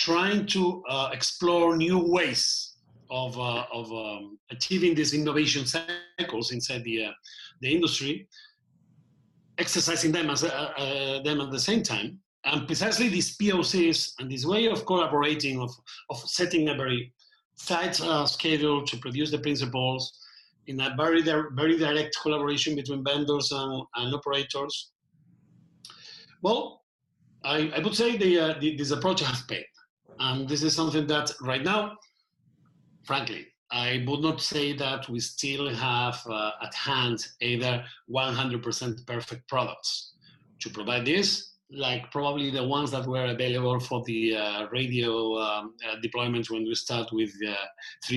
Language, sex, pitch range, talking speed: English, male, 125-160 Hz, 150 wpm